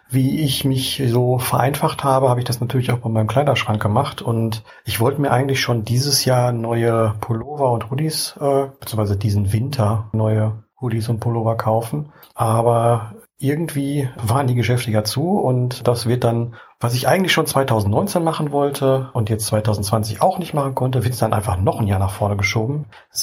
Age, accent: 40-59, German